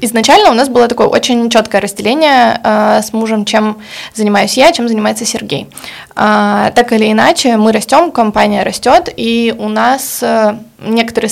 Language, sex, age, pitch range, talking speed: Russian, female, 20-39, 205-230 Hz, 155 wpm